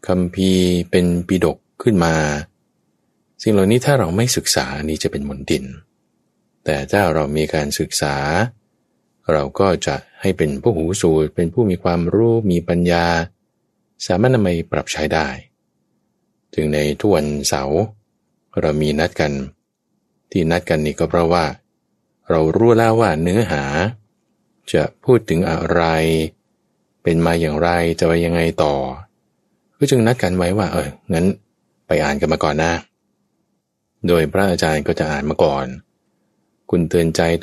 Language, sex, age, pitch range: Thai, male, 20-39, 75-95 Hz